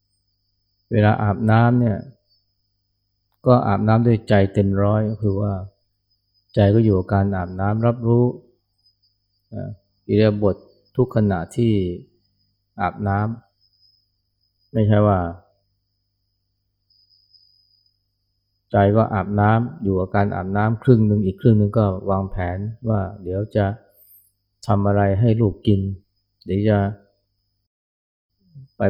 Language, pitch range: Thai, 100-105 Hz